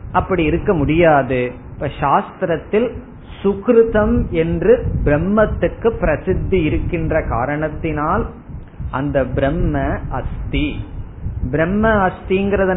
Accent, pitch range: native, 145-195 Hz